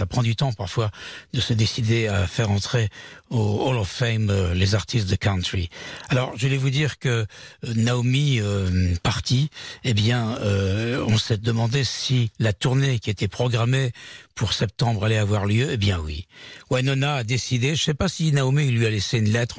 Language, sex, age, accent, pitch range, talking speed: French, male, 60-79, French, 105-130 Hz, 195 wpm